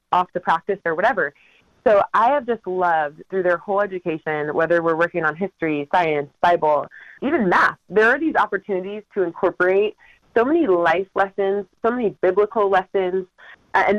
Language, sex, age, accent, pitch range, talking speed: English, female, 30-49, American, 165-210 Hz, 165 wpm